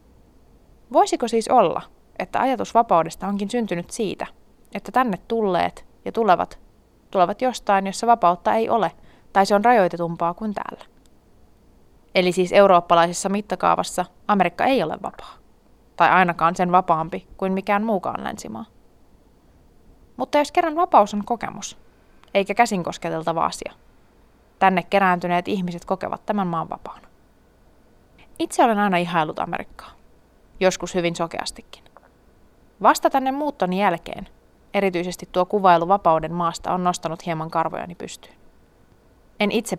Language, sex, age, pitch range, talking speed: Finnish, female, 20-39, 175-235 Hz, 125 wpm